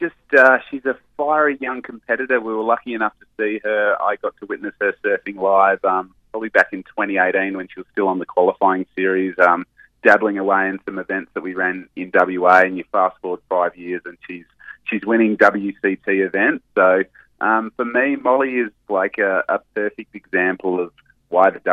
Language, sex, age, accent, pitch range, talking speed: English, male, 30-49, Australian, 90-110 Hz, 195 wpm